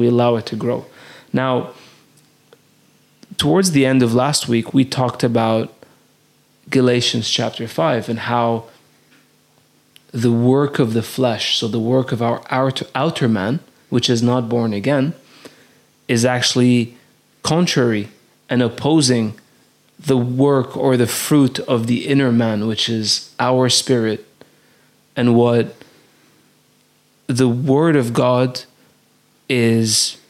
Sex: male